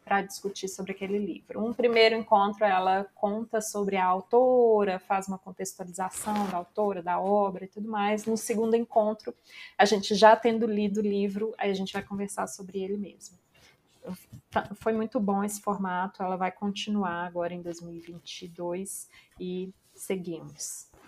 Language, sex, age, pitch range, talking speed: Portuguese, female, 20-39, 190-215 Hz, 155 wpm